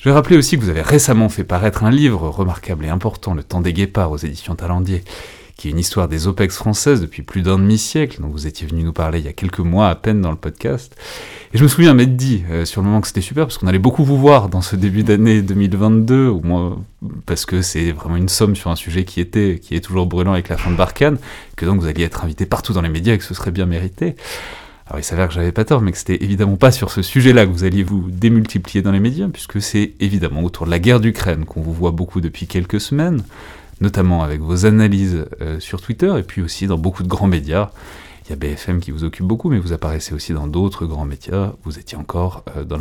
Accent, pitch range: French, 85-110 Hz